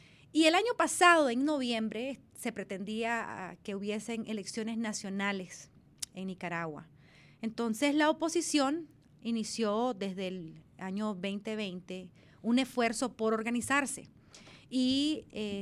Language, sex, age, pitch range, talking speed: Spanish, female, 30-49, 210-275 Hz, 110 wpm